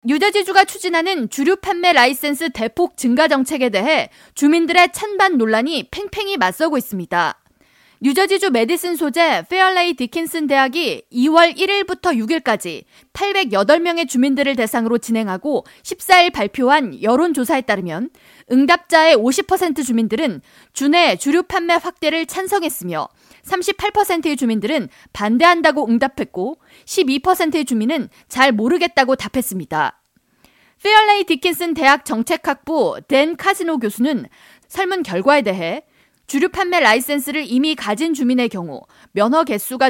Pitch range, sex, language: 250-345 Hz, female, Korean